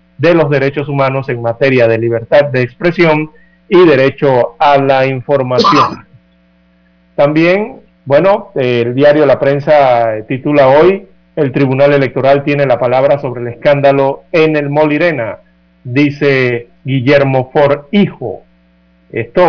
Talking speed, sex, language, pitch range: 125 wpm, male, Spanish, 125-150 Hz